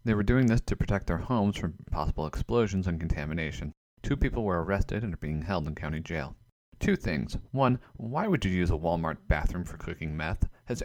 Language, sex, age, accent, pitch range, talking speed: English, male, 30-49, American, 85-115 Hz, 210 wpm